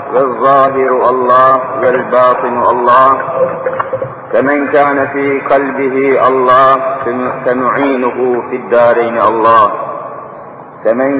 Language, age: Turkish, 50-69